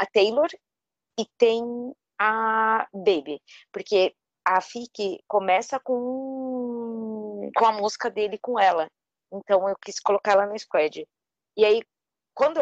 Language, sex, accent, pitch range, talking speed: Portuguese, female, Brazilian, 175-230 Hz, 130 wpm